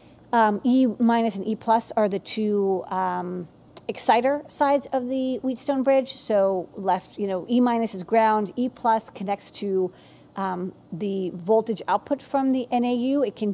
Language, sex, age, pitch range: English, female, 40-59, 190-230 Hz